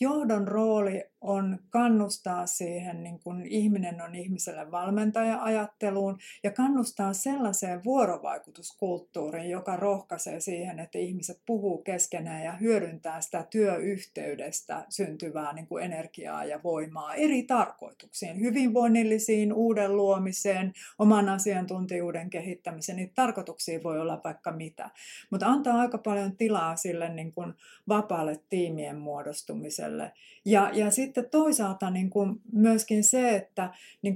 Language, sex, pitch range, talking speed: Finnish, female, 175-215 Hz, 120 wpm